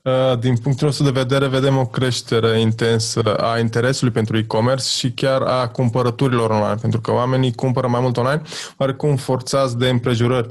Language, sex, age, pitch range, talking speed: Romanian, male, 20-39, 120-140 Hz, 165 wpm